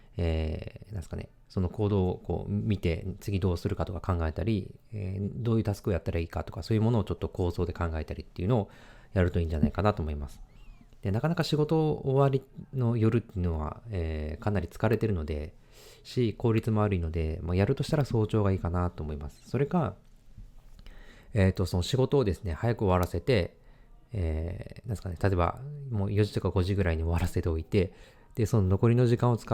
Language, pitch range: Japanese, 90-115 Hz